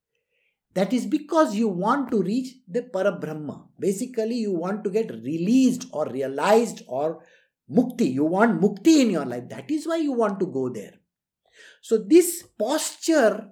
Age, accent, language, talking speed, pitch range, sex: 50-69, Indian, English, 160 wpm, 190-260 Hz, male